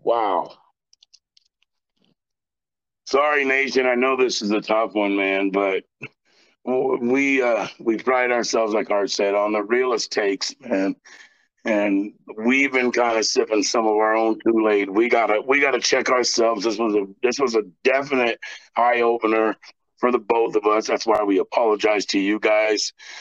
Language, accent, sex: English, American, male